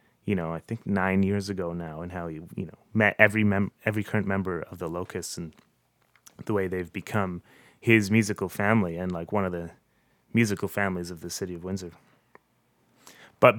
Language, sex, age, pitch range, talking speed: English, male, 30-49, 95-115 Hz, 190 wpm